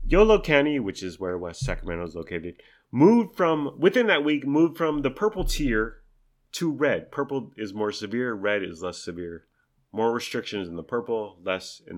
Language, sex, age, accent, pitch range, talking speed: English, male, 30-49, American, 110-155 Hz, 180 wpm